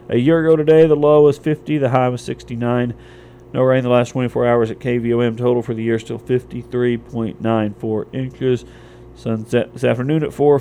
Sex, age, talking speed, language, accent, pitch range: male, 40-59, 205 wpm, English, American, 110-130 Hz